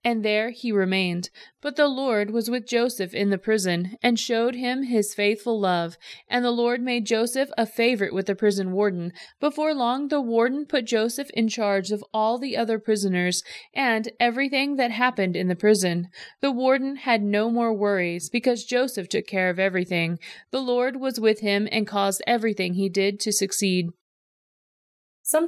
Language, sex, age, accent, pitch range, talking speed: English, female, 30-49, American, 195-245 Hz, 175 wpm